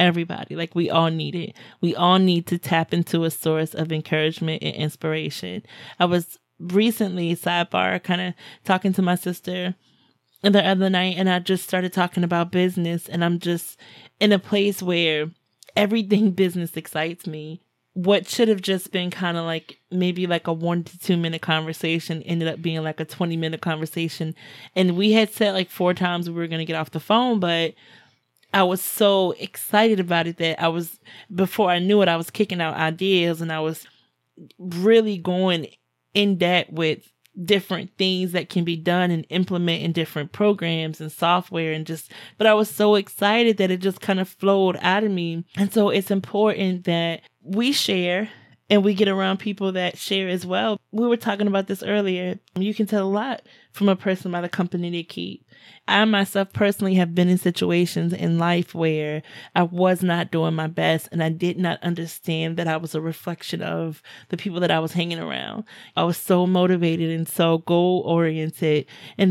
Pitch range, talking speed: 165-195 Hz, 190 wpm